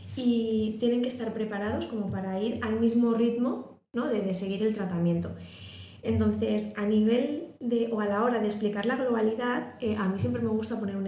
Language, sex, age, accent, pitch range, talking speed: Spanish, female, 20-39, Spanish, 190-230 Hz, 200 wpm